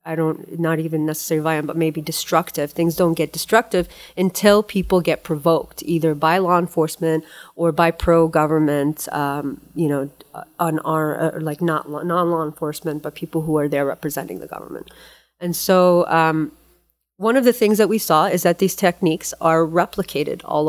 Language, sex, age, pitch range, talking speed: English, female, 30-49, 160-185 Hz, 170 wpm